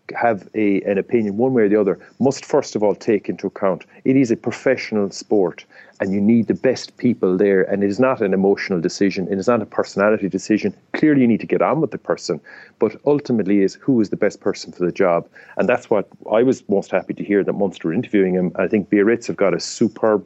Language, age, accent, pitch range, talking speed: English, 40-59, Irish, 95-120 Hz, 245 wpm